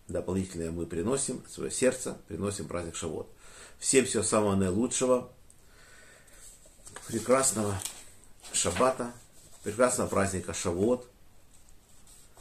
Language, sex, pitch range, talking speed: Russian, male, 95-120 Hz, 80 wpm